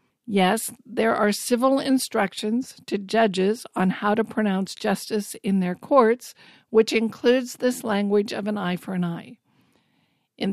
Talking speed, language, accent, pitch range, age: 150 wpm, English, American, 200-240 Hz, 50-69